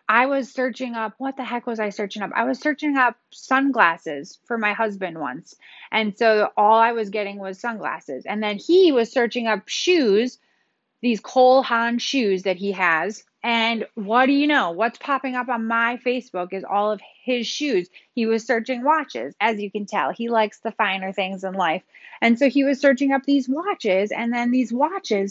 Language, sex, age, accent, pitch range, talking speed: English, female, 30-49, American, 205-270 Hz, 200 wpm